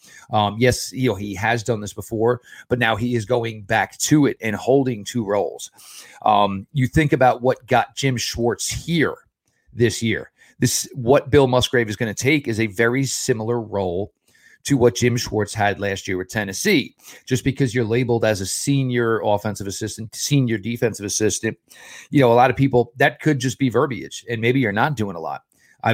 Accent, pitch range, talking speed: American, 105-130 Hz, 195 wpm